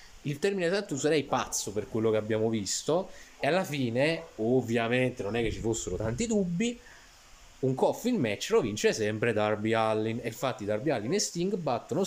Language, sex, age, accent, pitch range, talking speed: Italian, male, 30-49, native, 105-140 Hz, 180 wpm